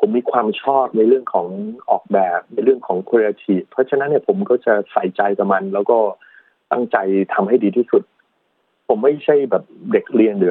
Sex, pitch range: male, 105-150 Hz